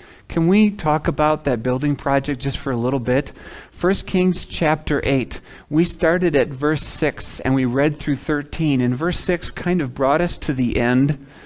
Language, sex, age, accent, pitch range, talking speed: English, male, 40-59, American, 115-150 Hz, 190 wpm